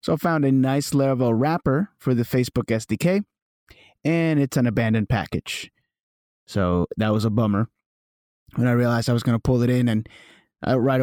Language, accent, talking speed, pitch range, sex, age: English, American, 180 wpm, 115-140 Hz, male, 30-49